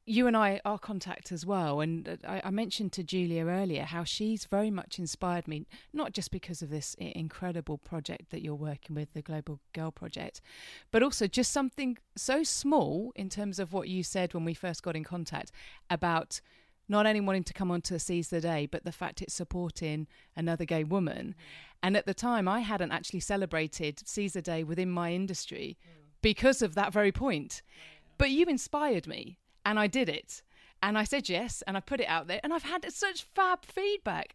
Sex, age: female, 30-49